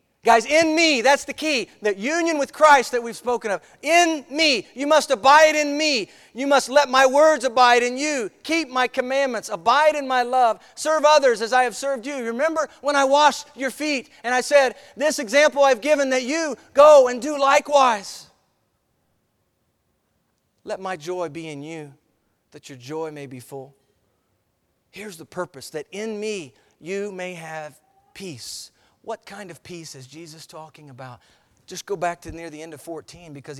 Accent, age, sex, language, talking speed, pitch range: American, 40-59, male, English, 180 wpm, 175-270 Hz